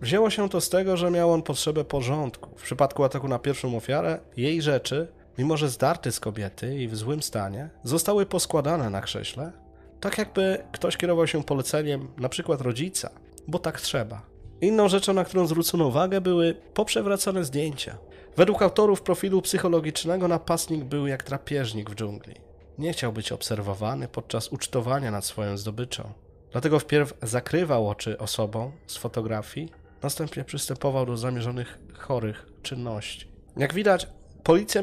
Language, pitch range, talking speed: Polish, 115-160 Hz, 150 wpm